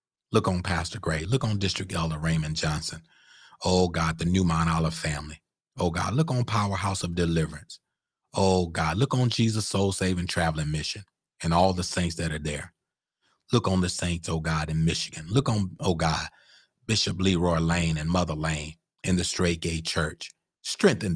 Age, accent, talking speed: 30-49, American, 175 wpm